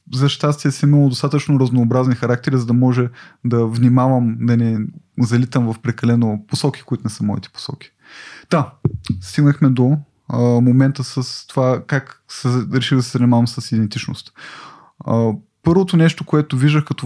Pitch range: 120-150 Hz